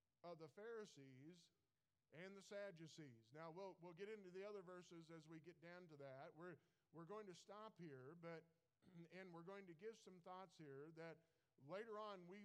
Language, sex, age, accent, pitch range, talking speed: English, male, 50-69, American, 155-185 Hz, 190 wpm